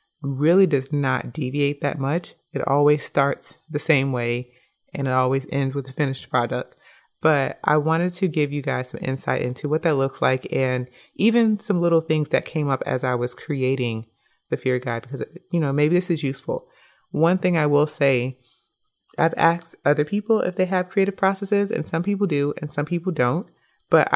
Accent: American